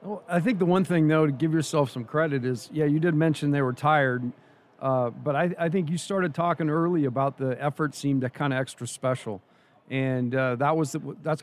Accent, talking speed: American, 225 wpm